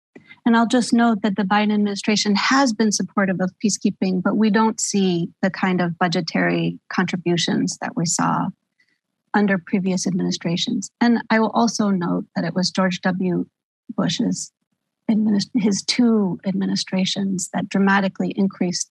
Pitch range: 185-220 Hz